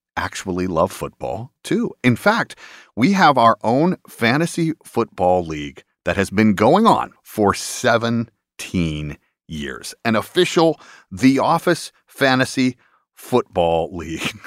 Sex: male